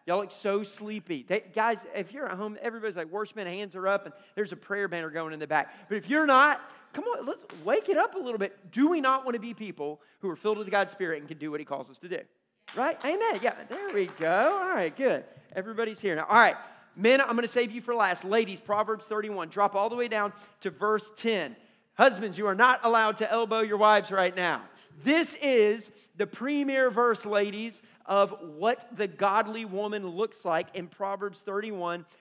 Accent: American